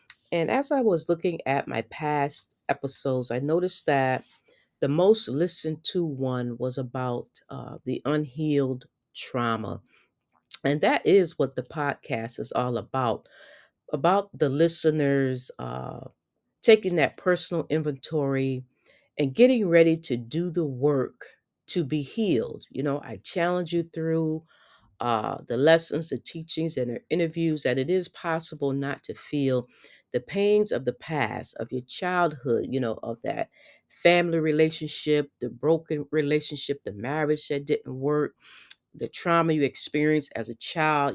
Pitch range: 130-170 Hz